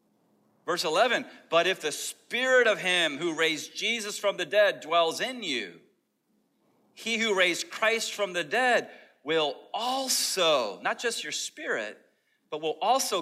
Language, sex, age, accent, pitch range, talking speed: English, male, 30-49, American, 185-265 Hz, 150 wpm